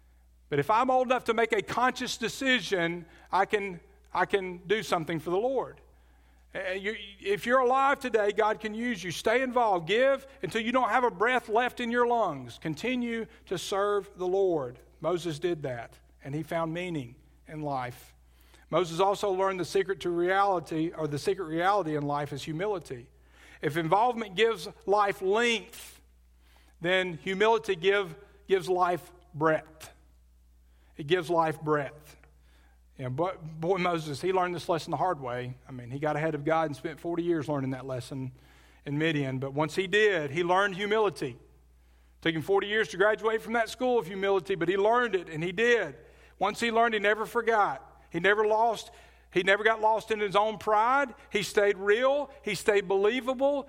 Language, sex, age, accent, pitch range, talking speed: English, male, 50-69, American, 150-215 Hz, 175 wpm